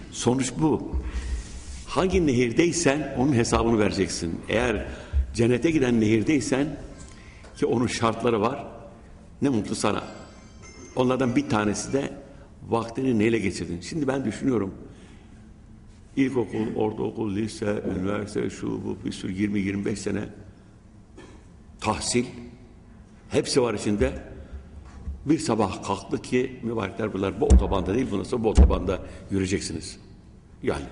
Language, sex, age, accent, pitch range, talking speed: Turkish, male, 60-79, native, 95-130 Hz, 110 wpm